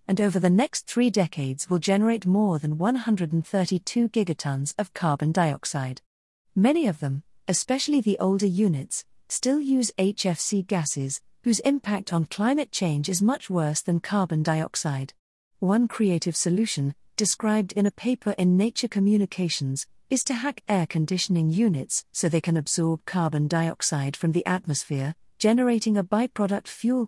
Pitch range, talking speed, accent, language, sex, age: 160-215 Hz, 145 wpm, British, English, female, 40-59